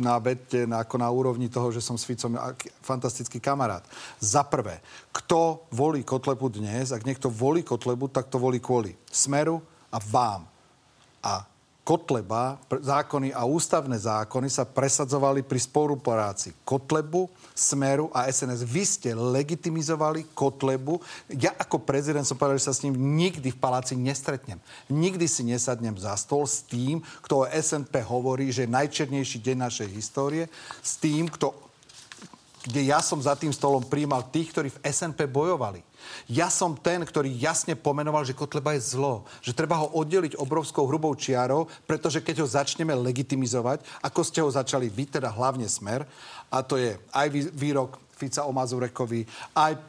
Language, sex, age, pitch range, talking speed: Slovak, male, 40-59, 125-150 Hz, 160 wpm